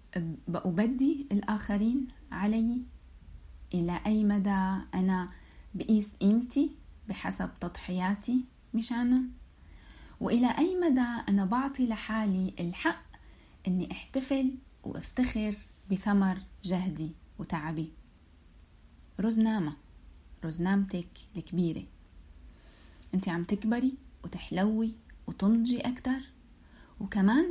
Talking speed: 75 wpm